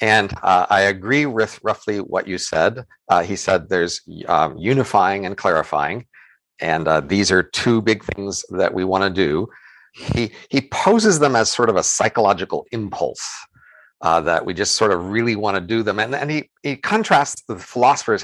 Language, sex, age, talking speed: English, male, 50-69, 190 wpm